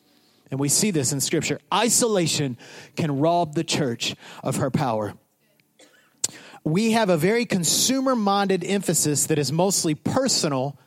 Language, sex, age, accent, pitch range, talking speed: English, male, 30-49, American, 170-285 Hz, 130 wpm